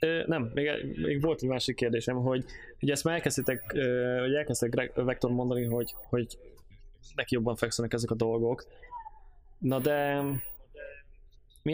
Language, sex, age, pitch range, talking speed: Hungarian, male, 20-39, 110-140 Hz, 140 wpm